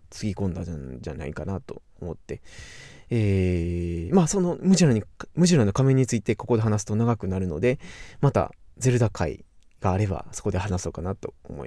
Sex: male